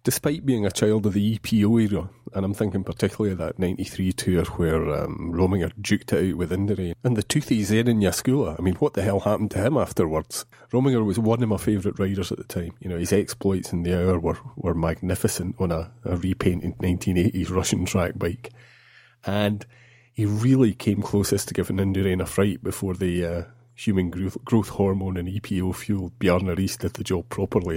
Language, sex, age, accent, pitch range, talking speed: English, male, 30-49, British, 90-115 Hz, 195 wpm